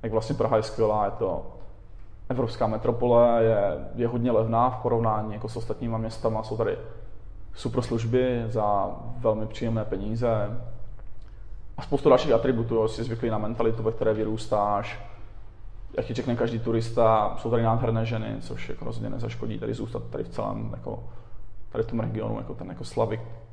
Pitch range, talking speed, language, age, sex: 110-120 Hz, 165 wpm, Slovak, 20-39, male